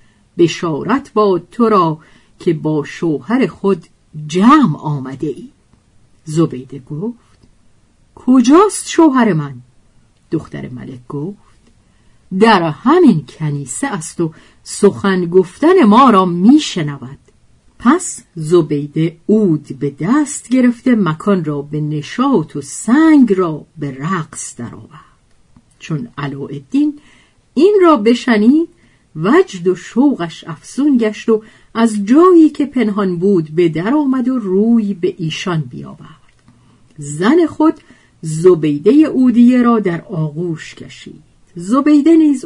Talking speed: 115 wpm